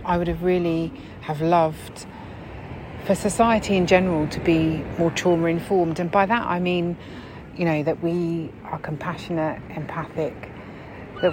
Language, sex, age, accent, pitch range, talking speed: English, female, 30-49, British, 155-185 Hz, 145 wpm